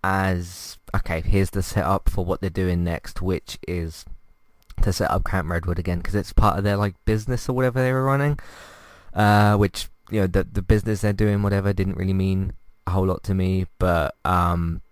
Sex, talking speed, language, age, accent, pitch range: male, 200 wpm, English, 20-39, British, 90-105 Hz